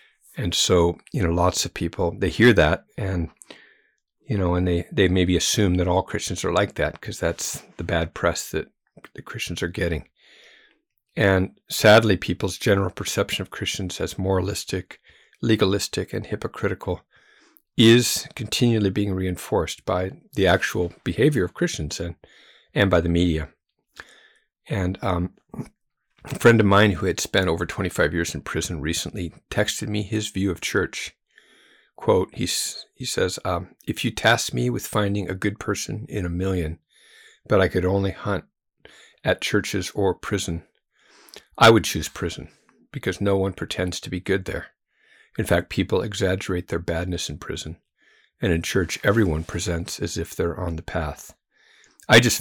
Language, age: English, 50-69